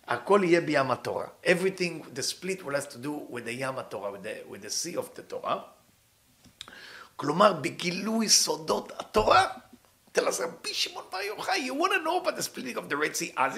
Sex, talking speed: male, 130 wpm